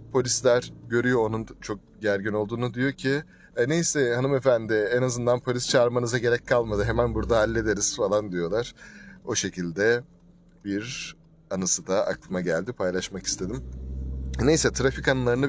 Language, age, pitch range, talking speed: Turkish, 30-49, 100-135 Hz, 130 wpm